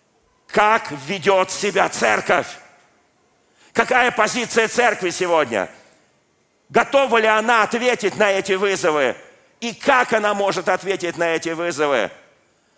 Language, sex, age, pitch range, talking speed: Russian, male, 50-69, 145-195 Hz, 110 wpm